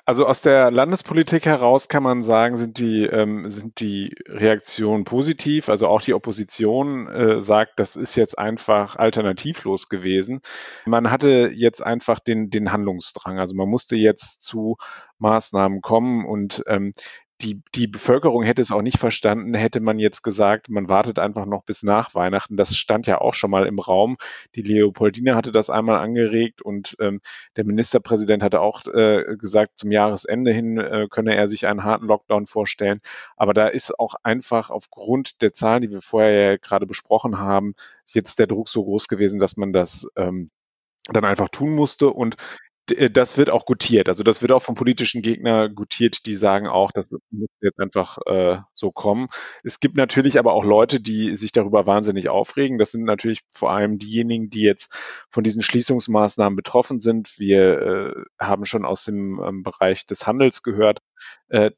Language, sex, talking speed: German, male, 180 wpm